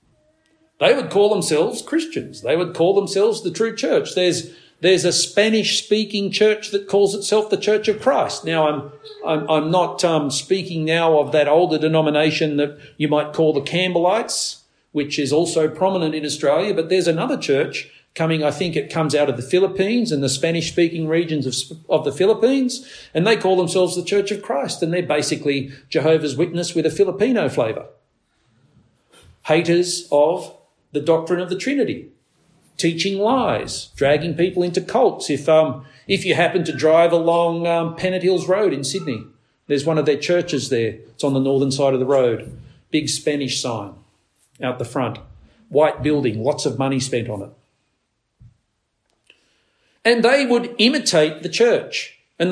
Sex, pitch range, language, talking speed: male, 145-205 Hz, English, 170 wpm